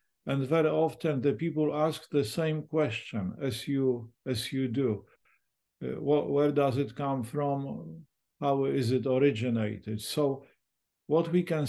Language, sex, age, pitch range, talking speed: English, male, 50-69, 130-155 Hz, 150 wpm